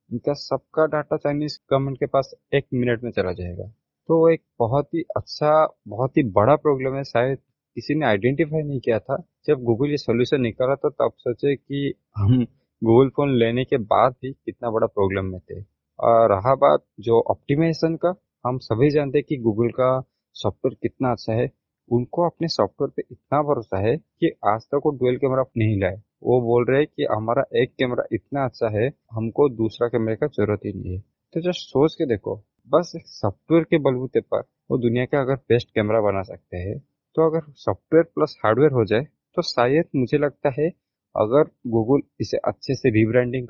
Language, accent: Hindi, native